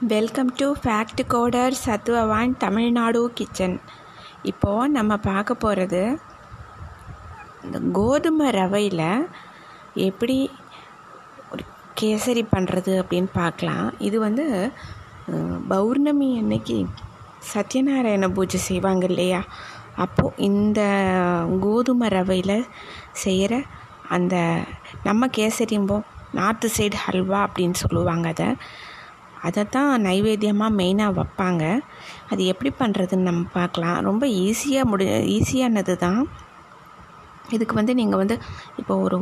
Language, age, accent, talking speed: Tamil, 20-39, native, 95 wpm